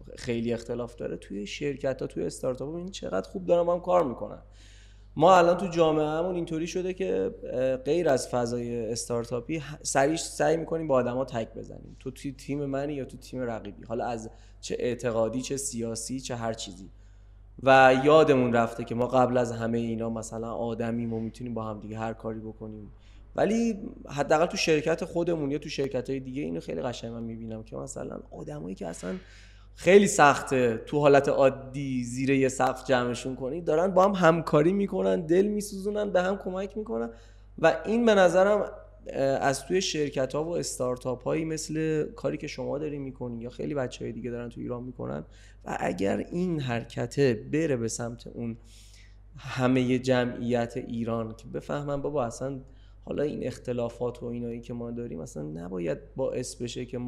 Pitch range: 115-150 Hz